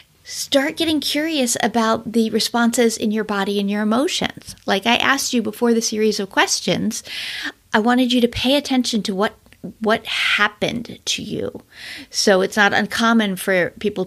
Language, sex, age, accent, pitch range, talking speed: English, female, 50-69, American, 180-235 Hz, 165 wpm